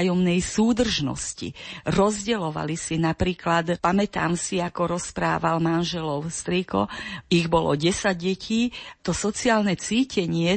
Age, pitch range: 50-69, 160-195 Hz